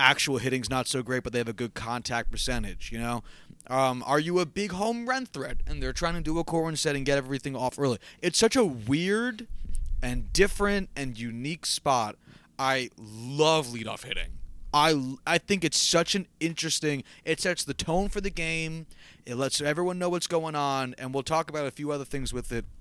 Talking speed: 205 wpm